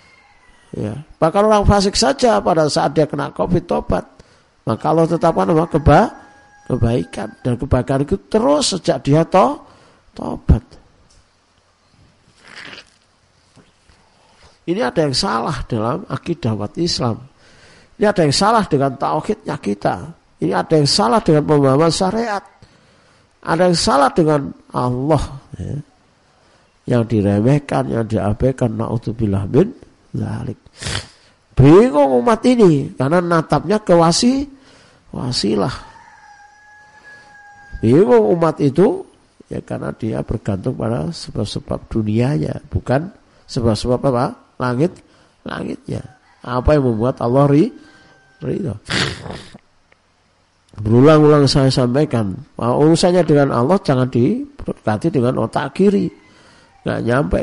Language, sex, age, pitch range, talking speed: Indonesian, male, 50-69, 125-195 Hz, 105 wpm